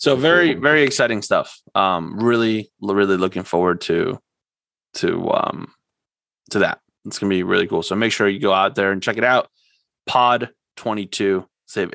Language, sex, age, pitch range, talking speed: English, male, 20-39, 110-135 Hz, 175 wpm